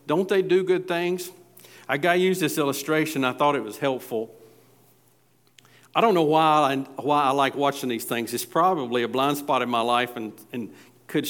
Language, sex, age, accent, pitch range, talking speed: English, male, 50-69, American, 140-190 Hz, 200 wpm